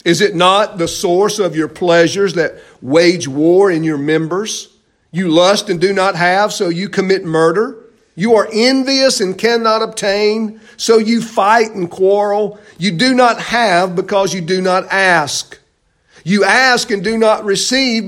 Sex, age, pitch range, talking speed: male, 50-69, 190-240 Hz, 165 wpm